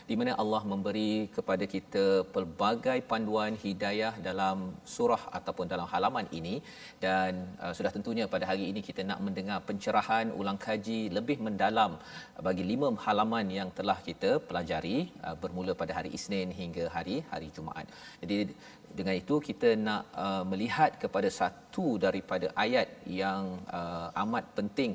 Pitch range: 95-135 Hz